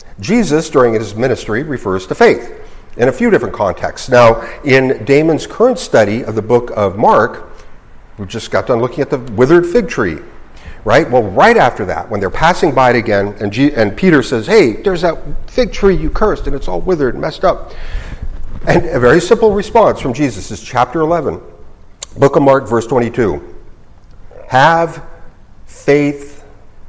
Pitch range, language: 105-150 Hz, English